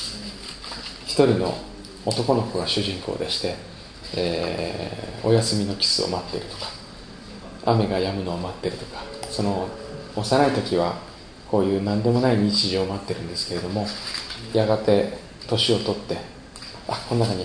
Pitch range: 95-125 Hz